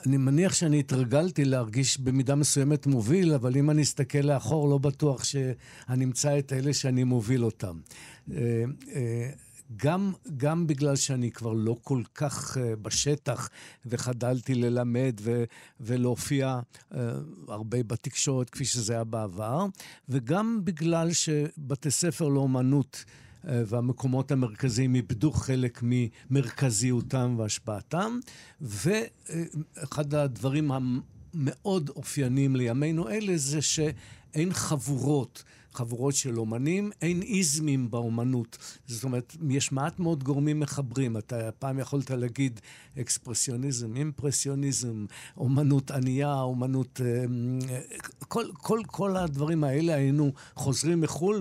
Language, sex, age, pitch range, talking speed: Hebrew, male, 60-79, 125-150 Hz, 105 wpm